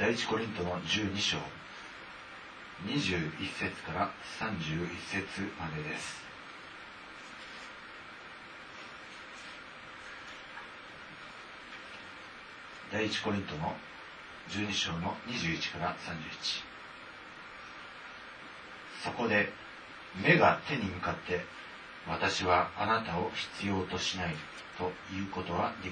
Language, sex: Japanese, male